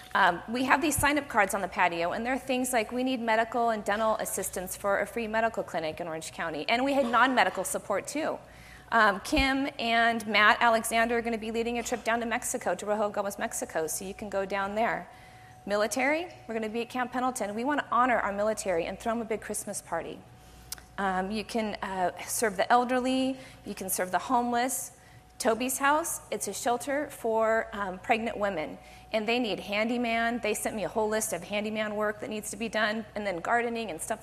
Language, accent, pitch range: English, American, 200-240 Hz